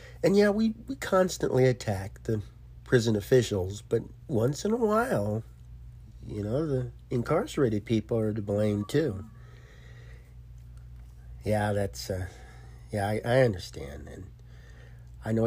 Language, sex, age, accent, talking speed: English, male, 50-69, American, 130 wpm